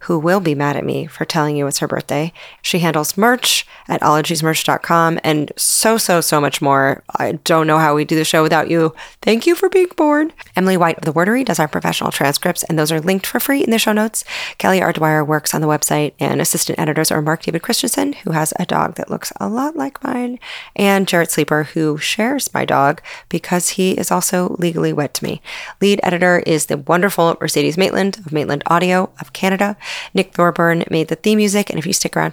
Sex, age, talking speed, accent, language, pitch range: female, 30-49, 220 wpm, American, English, 155-200 Hz